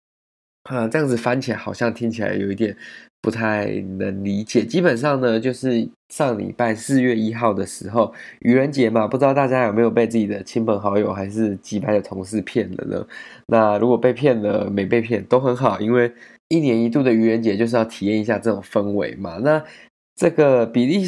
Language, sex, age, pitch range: Chinese, male, 20-39, 105-120 Hz